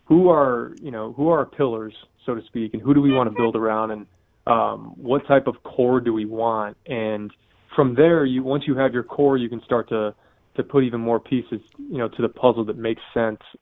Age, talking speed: 20-39, 240 wpm